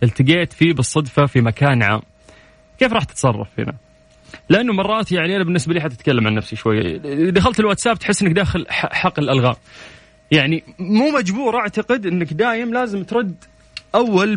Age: 20-39